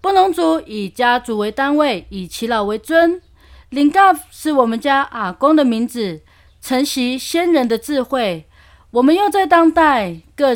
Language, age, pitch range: Chinese, 30-49, 185-250 Hz